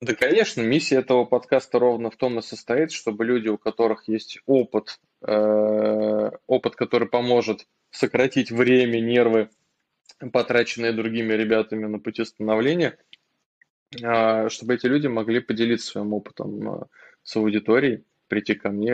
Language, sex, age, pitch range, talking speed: Russian, male, 20-39, 105-120 Hz, 125 wpm